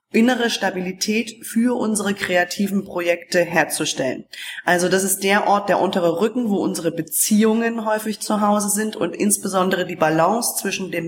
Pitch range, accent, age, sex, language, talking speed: 170-215 Hz, German, 20-39, female, German, 150 wpm